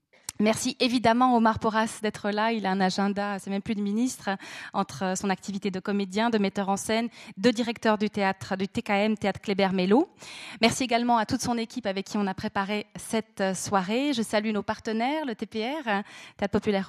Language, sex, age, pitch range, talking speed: French, female, 20-39, 195-235 Hz, 190 wpm